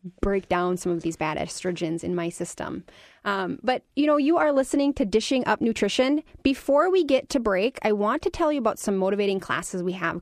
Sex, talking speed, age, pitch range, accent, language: female, 215 wpm, 30-49, 205-285 Hz, American, English